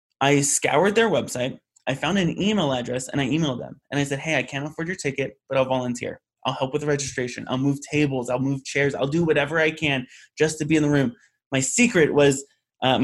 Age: 20-39